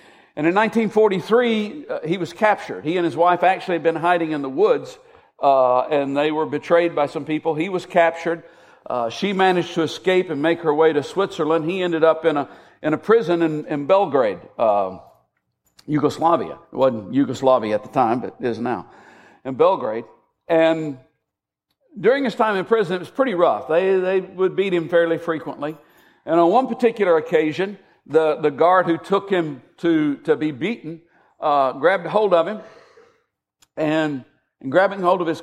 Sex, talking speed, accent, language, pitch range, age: male, 185 wpm, American, English, 155-195 Hz, 50-69